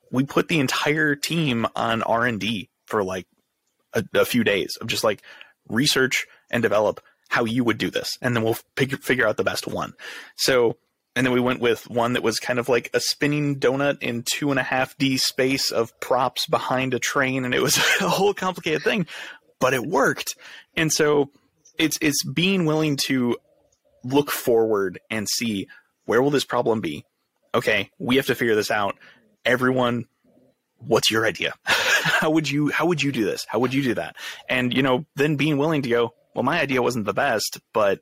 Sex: male